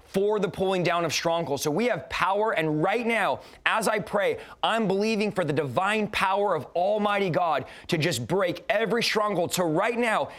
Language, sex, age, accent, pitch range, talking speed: English, male, 30-49, American, 175-215 Hz, 190 wpm